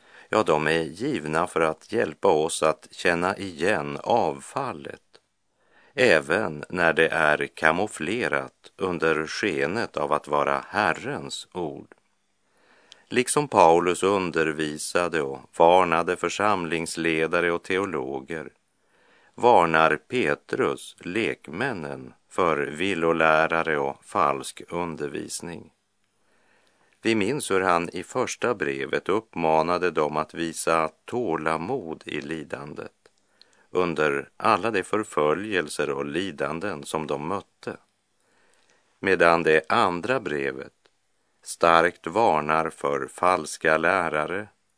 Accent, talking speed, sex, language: Swedish, 95 wpm, male, Polish